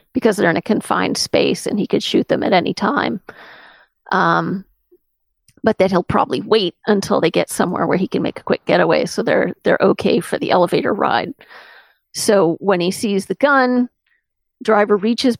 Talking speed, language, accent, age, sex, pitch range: 185 wpm, English, American, 40-59, female, 200-245 Hz